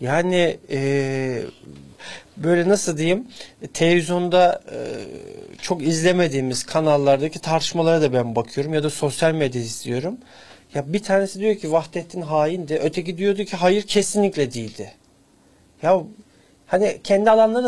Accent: native